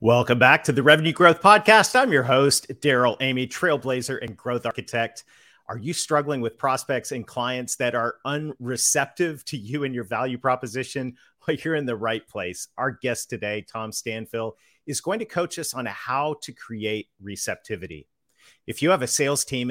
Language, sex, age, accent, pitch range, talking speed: English, male, 40-59, American, 110-140 Hz, 180 wpm